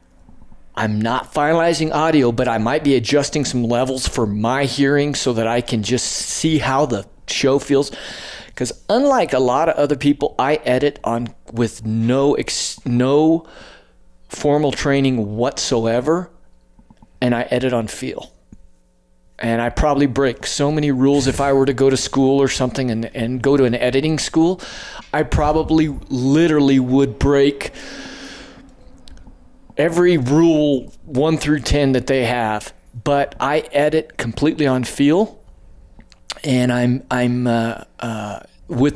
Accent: American